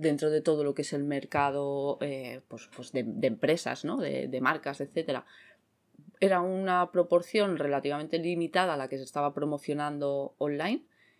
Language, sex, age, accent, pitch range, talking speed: Spanish, female, 20-39, Spanish, 145-180 Hz, 160 wpm